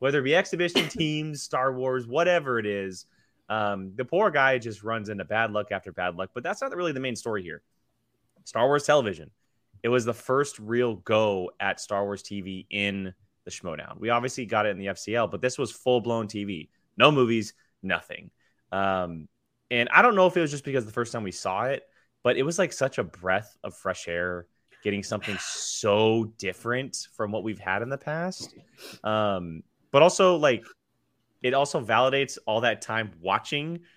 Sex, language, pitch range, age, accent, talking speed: male, English, 100-130 Hz, 20-39, American, 195 wpm